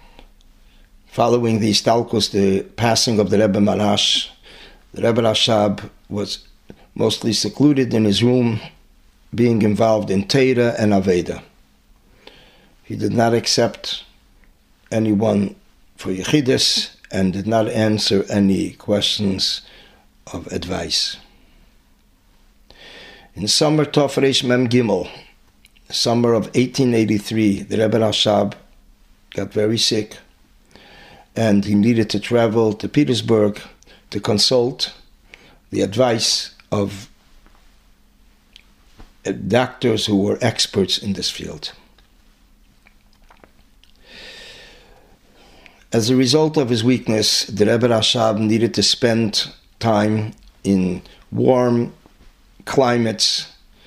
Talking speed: 100 wpm